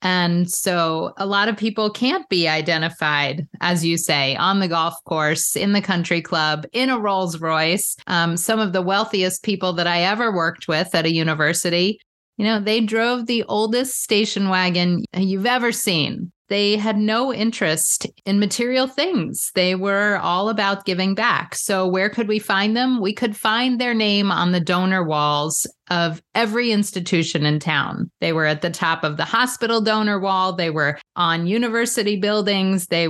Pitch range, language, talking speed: 165-215 Hz, English, 180 wpm